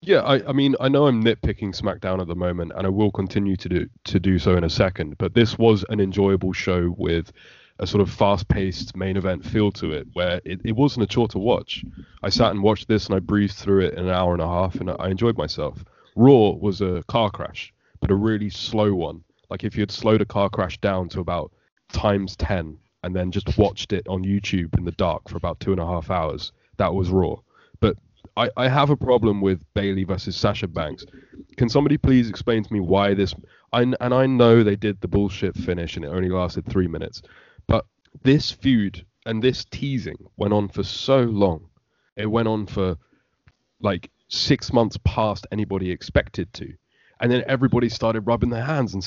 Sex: male